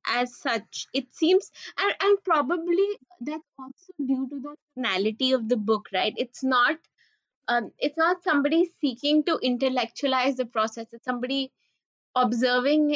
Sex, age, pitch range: female, 20-39, 240-300 Hz